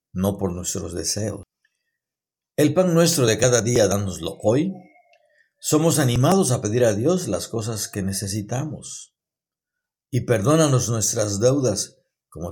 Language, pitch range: Spanish, 100-140 Hz